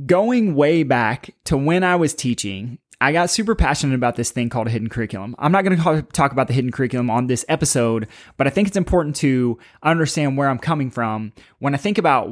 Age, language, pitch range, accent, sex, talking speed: 20-39, English, 125-160 Hz, American, male, 225 wpm